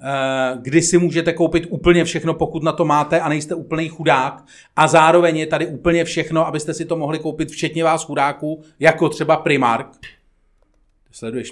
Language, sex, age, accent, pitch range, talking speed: Czech, male, 40-59, native, 135-170 Hz, 165 wpm